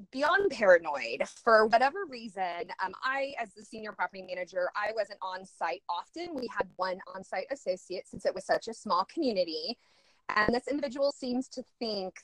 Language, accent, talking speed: English, American, 165 wpm